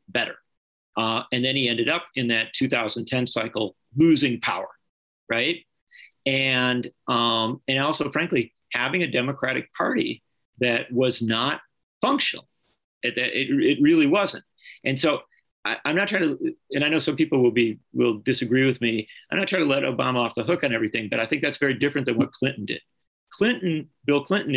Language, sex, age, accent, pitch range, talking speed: English, male, 40-59, American, 120-160 Hz, 180 wpm